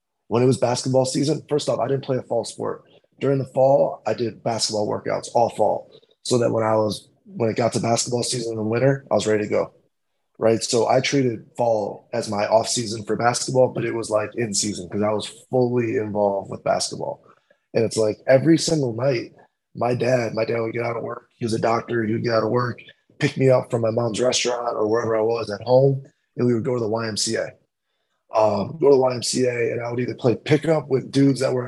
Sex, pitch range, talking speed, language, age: male, 115-130 Hz, 240 wpm, English, 20-39